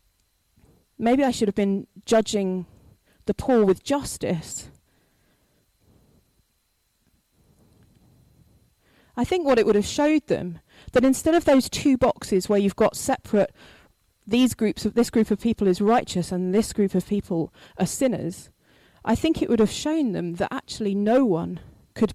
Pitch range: 185-235 Hz